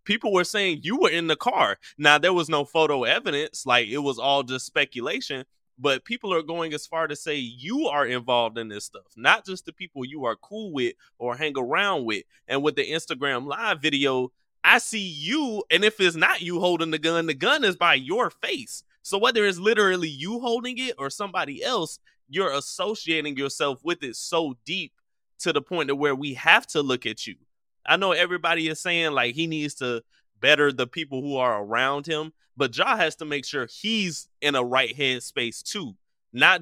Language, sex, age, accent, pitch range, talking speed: English, male, 20-39, American, 135-180 Hz, 205 wpm